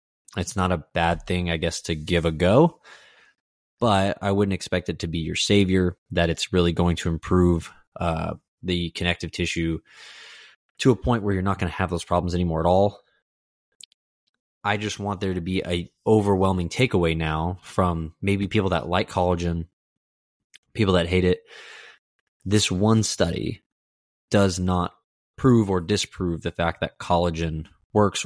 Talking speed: 165 wpm